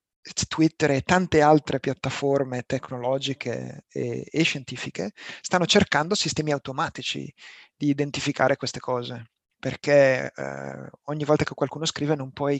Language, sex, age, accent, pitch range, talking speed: Italian, male, 30-49, native, 130-150 Hz, 125 wpm